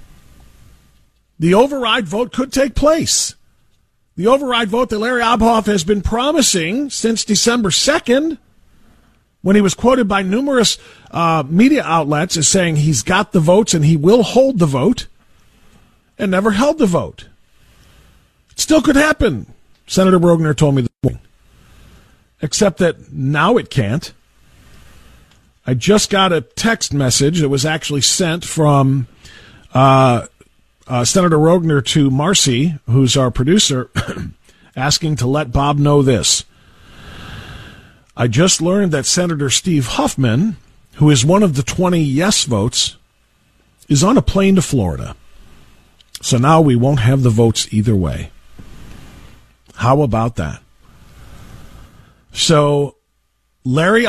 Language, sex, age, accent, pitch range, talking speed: English, male, 40-59, American, 130-205 Hz, 135 wpm